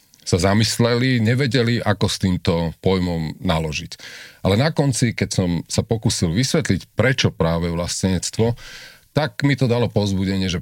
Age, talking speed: 40-59, 140 wpm